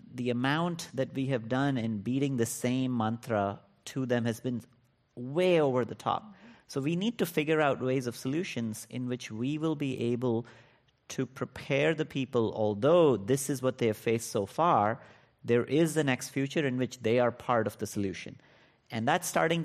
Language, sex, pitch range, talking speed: English, male, 115-140 Hz, 190 wpm